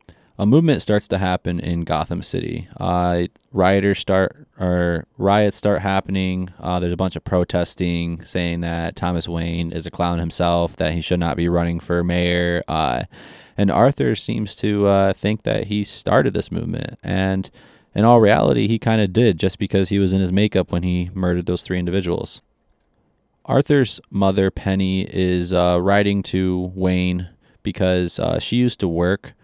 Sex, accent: male, American